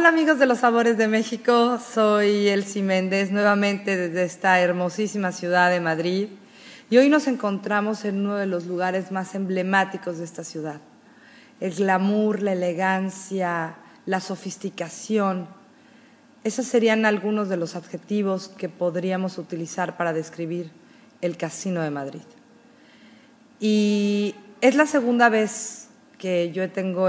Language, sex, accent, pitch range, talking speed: Spanish, female, Mexican, 175-225 Hz, 135 wpm